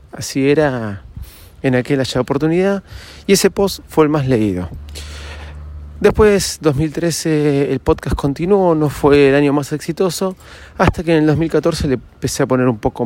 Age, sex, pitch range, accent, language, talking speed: 30-49, male, 110-155 Hz, Argentinian, Spanish, 160 wpm